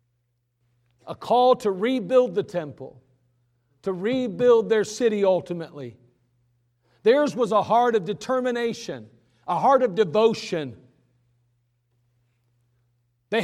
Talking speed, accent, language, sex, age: 100 wpm, American, English, male, 50-69